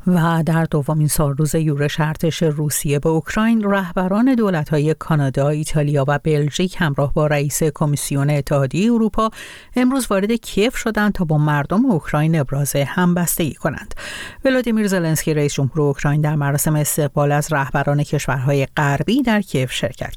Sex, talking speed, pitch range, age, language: female, 145 wpm, 150-195 Hz, 50-69, Persian